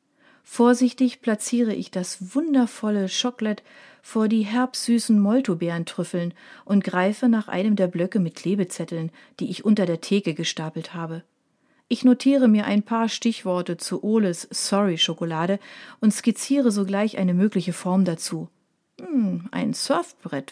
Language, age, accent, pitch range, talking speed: German, 40-59, German, 175-235 Hz, 130 wpm